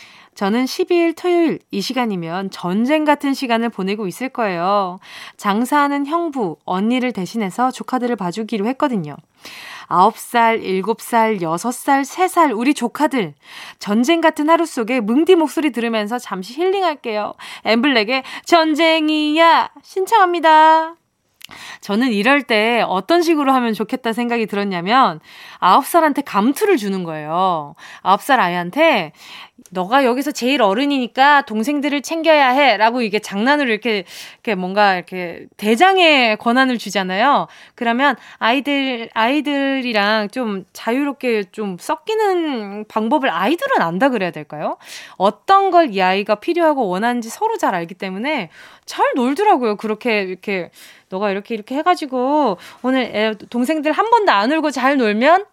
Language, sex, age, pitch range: Korean, female, 20-39, 210-300 Hz